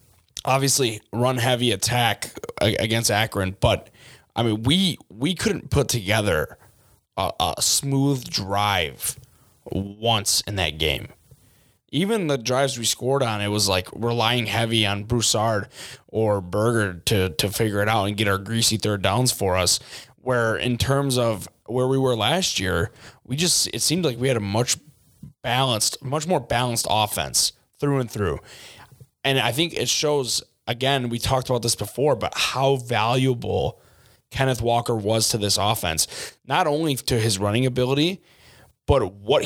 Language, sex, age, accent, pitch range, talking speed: English, male, 20-39, American, 110-130 Hz, 160 wpm